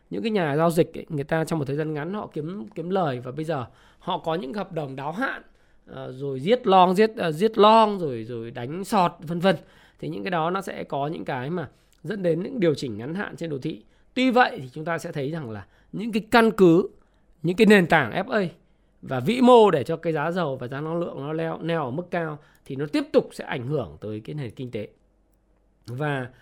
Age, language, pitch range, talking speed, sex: 20-39, Vietnamese, 155-215 Hz, 250 wpm, male